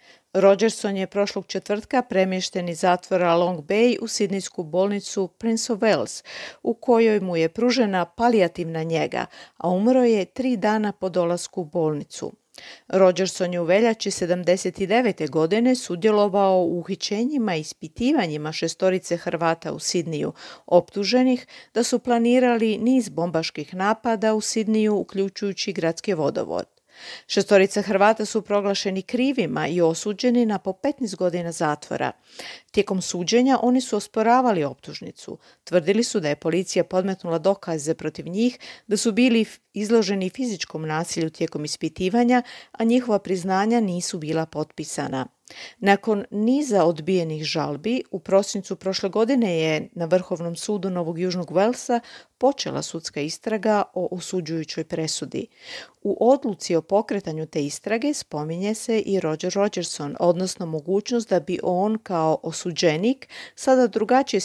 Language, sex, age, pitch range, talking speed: Croatian, female, 40-59, 175-220 Hz, 130 wpm